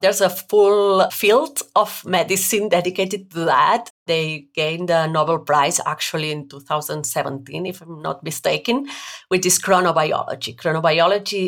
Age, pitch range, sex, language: 30-49, 150-190 Hz, female, English